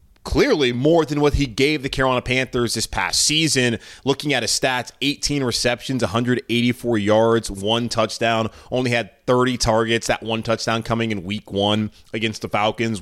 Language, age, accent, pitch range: English, 20-39, American, 105-125 Hz